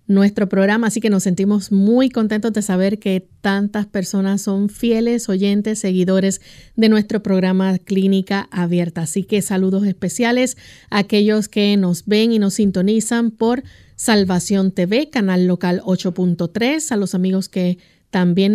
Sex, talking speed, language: female, 145 wpm, Spanish